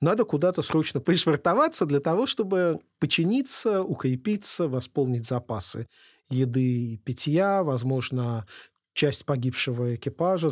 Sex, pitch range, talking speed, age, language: male, 130-180 Hz, 105 wpm, 40-59, Russian